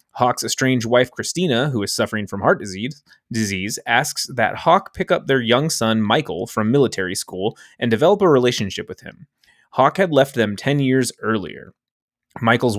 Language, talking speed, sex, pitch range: English, 170 wpm, male, 110-135 Hz